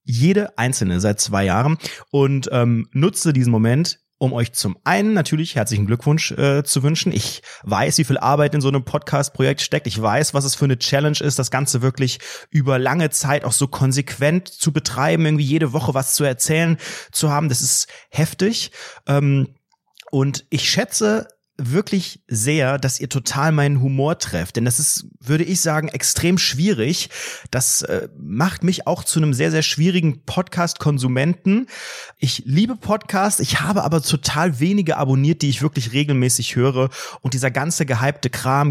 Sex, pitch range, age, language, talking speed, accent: male, 125-160 Hz, 30-49, German, 170 wpm, German